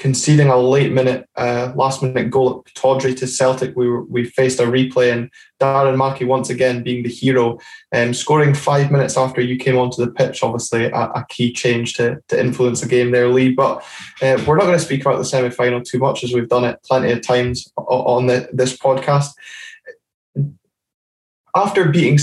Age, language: 20-39, English